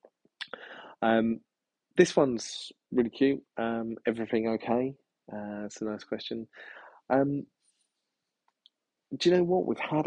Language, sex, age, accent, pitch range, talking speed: English, male, 30-49, British, 100-135 Hz, 120 wpm